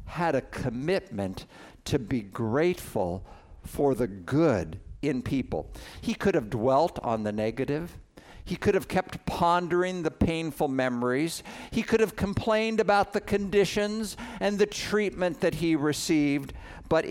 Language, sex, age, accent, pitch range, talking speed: English, male, 60-79, American, 125-185 Hz, 140 wpm